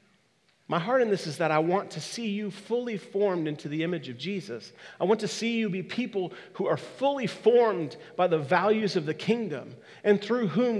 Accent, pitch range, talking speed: American, 145-200 Hz, 210 wpm